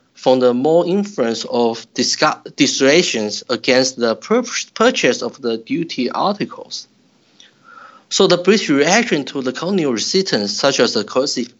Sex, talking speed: male, 135 wpm